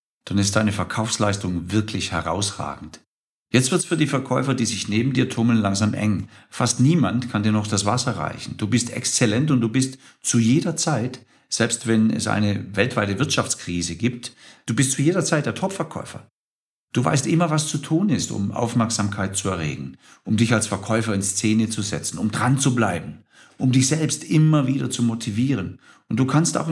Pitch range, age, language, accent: 110-140 Hz, 50-69, German, German